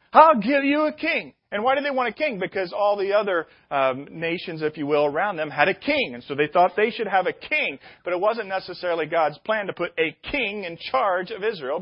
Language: English